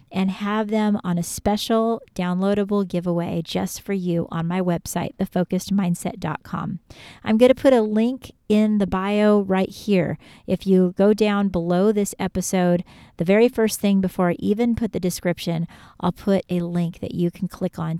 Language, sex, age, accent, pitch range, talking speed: English, female, 40-59, American, 175-215 Hz, 175 wpm